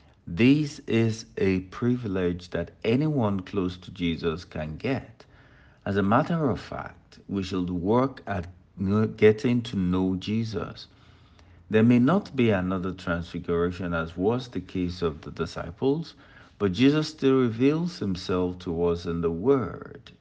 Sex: male